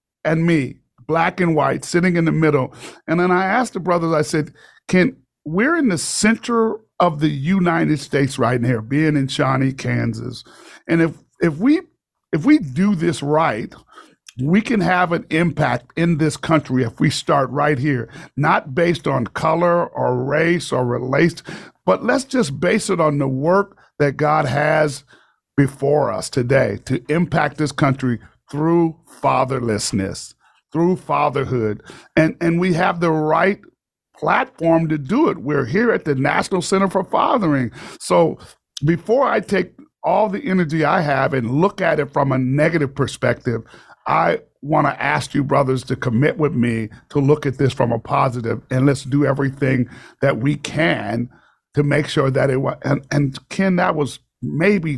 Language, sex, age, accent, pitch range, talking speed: English, male, 50-69, American, 135-170 Hz, 170 wpm